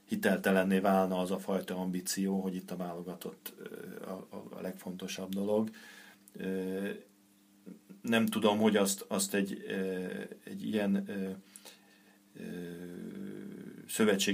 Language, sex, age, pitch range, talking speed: Hungarian, male, 40-59, 95-105 Hz, 90 wpm